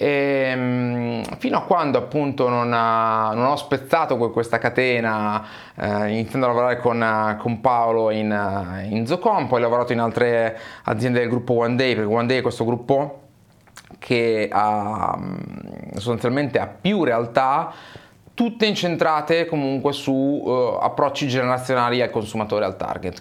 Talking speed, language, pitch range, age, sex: 140 wpm, Italian, 110-130 Hz, 20-39, male